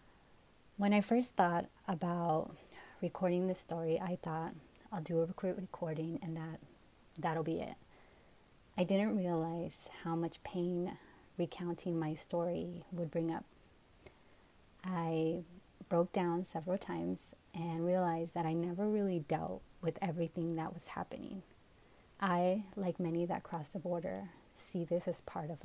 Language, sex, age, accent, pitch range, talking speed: English, female, 30-49, American, 165-190 Hz, 145 wpm